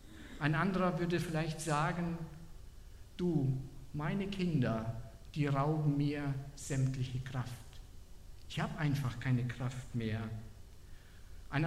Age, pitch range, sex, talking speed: 50-69, 130-195 Hz, male, 105 wpm